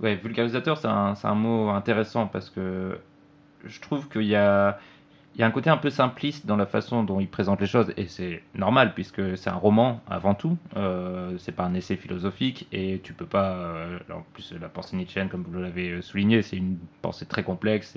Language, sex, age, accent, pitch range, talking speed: French, male, 20-39, French, 100-120 Hz, 215 wpm